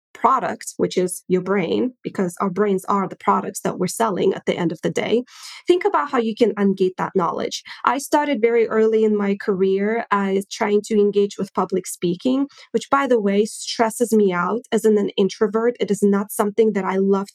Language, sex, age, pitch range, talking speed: English, female, 20-39, 200-240 Hz, 205 wpm